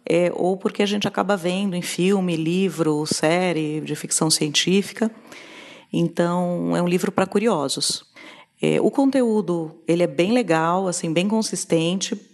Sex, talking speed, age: female, 145 wpm, 40-59